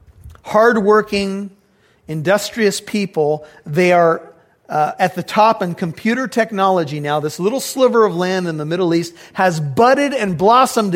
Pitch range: 145-205 Hz